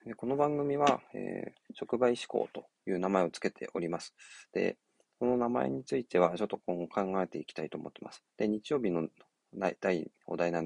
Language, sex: Japanese, male